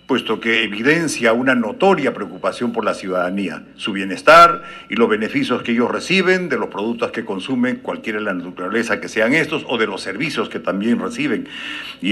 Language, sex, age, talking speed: Spanish, male, 50-69, 185 wpm